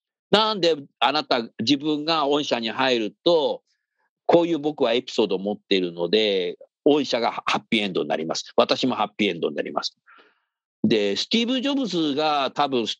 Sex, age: male, 50-69